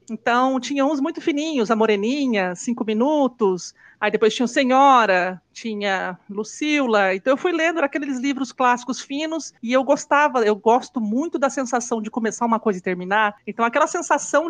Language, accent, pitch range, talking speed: Portuguese, Brazilian, 215-280 Hz, 175 wpm